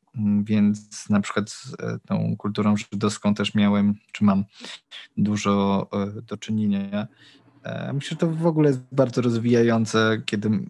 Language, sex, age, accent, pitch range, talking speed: Polish, male, 20-39, native, 105-120 Hz, 130 wpm